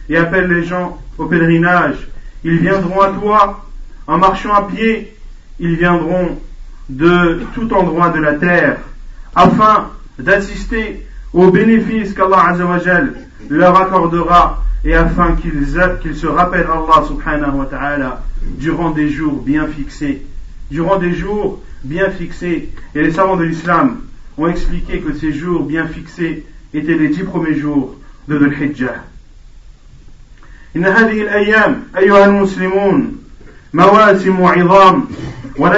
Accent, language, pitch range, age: French, French, 165-195 Hz, 40-59